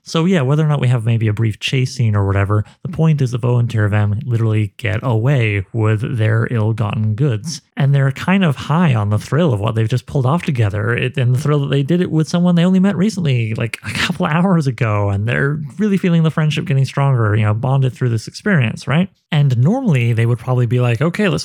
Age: 30-49